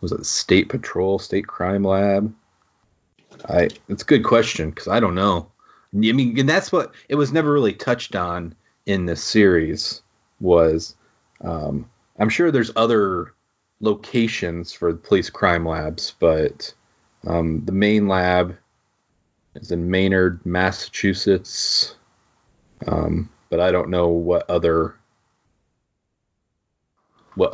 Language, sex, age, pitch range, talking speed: English, male, 30-49, 85-110 Hz, 130 wpm